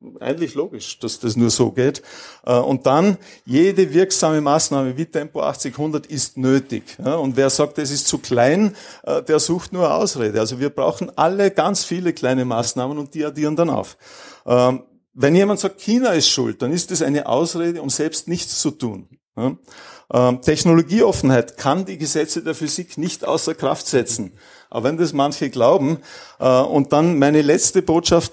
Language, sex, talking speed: German, male, 165 wpm